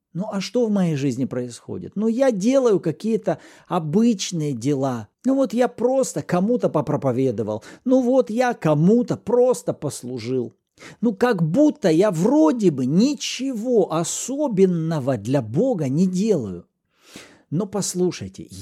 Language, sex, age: Russian, male, 50-69